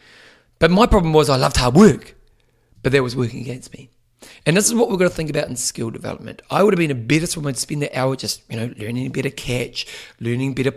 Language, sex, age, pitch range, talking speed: English, male, 30-49, 125-160 Hz, 250 wpm